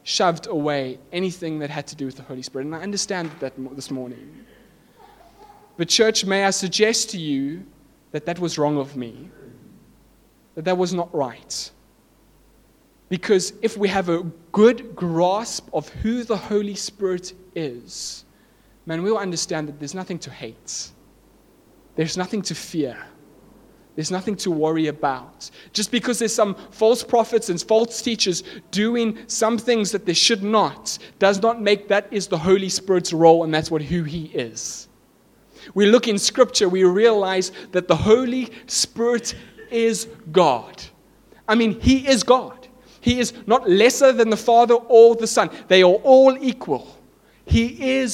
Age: 30-49